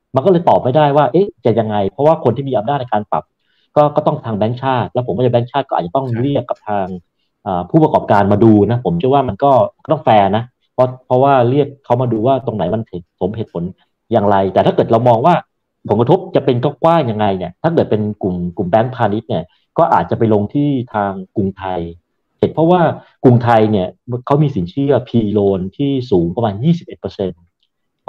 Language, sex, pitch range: Thai, male, 105-140 Hz